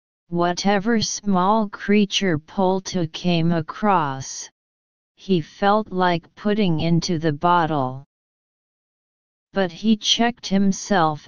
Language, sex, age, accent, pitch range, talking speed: English, female, 40-59, American, 160-195 Hz, 90 wpm